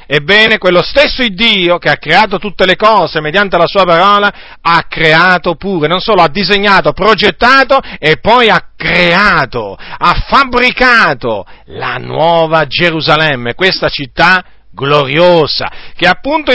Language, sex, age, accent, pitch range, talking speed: Italian, male, 50-69, native, 145-210 Hz, 135 wpm